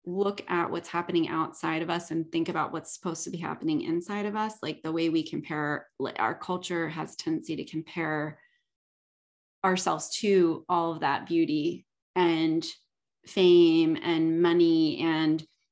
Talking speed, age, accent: 155 wpm, 30-49, American